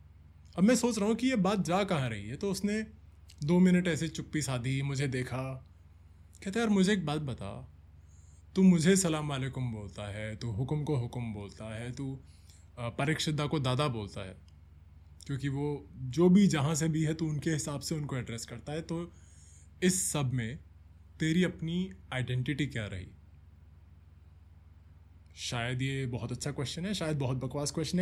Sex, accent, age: male, native, 20-39